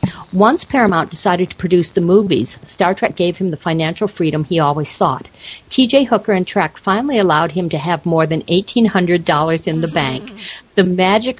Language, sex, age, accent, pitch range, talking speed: English, female, 50-69, American, 155-200 Hz, 180 wpm